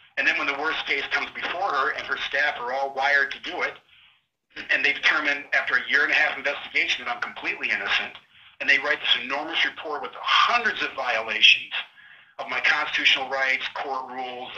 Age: 50-69